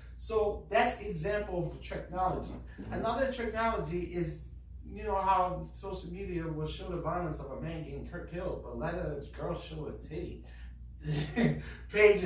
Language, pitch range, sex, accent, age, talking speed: English, 135-185 Hz, male, American, 30-49, 145 wpm